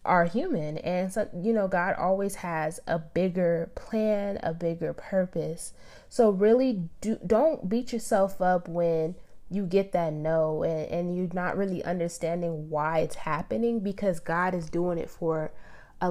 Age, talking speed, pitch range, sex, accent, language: 20-39, 160 wpm, 170-215 Hz, female, American, English